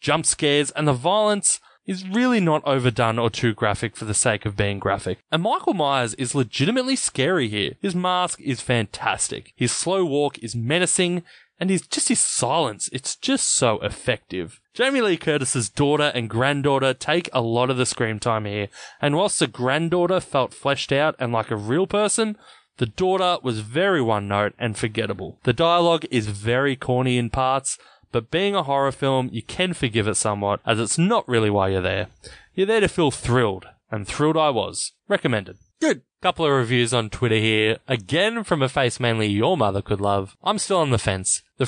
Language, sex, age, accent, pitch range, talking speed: English, male, 20-39, Australian, 115-165 Hz, 190 wpm